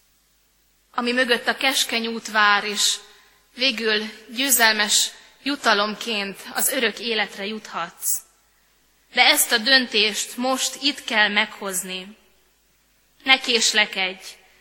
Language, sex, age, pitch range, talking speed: Hungarian, female, 20-39, 205-245 Hz, 100 wpm